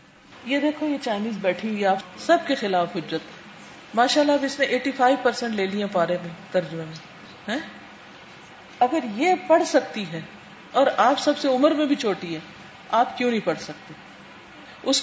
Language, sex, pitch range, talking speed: Urdu, female, 195-275 Hz, 150 wpm